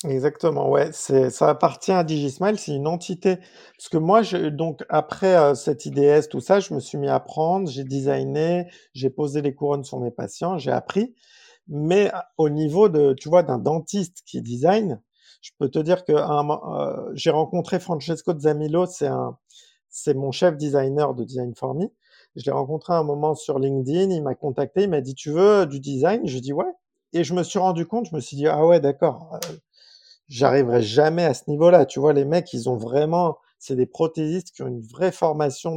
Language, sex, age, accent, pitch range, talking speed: French, male, 50-69, French, 145-180 Hz, 210 wpm